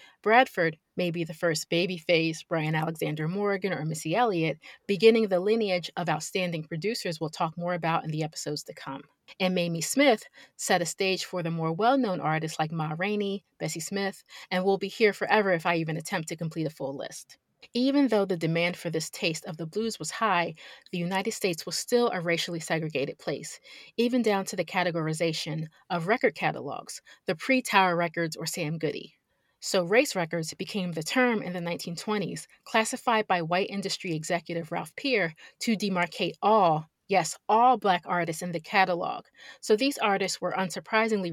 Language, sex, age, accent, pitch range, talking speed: English, female, 30-49, American, 165-205 Hz, 180 wpm